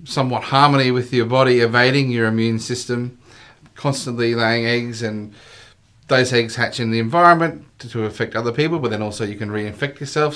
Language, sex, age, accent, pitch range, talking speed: English, male, 30-49, Australian, 105-125 Hz, 180 wpm